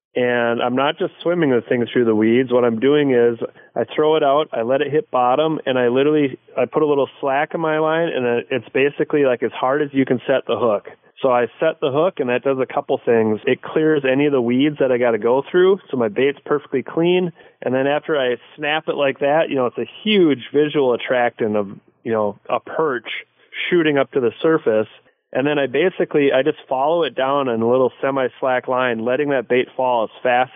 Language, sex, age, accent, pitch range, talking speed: English, male, 30-49, American, 125-155 Hz, 235 wpm